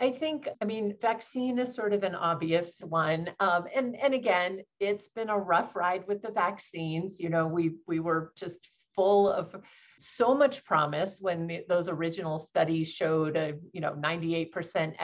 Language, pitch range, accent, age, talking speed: English, 160-200 Hz, American, 40-59, 175 wpm